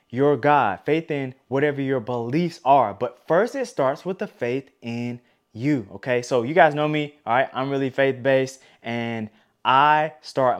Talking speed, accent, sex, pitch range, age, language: 175 wpm, American, male, 115-150 Hz, 20-39, English